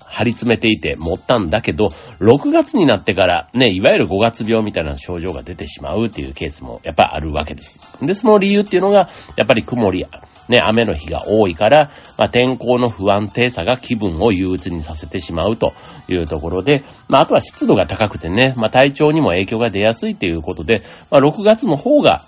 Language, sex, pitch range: Japanese, male, 90-140 Hz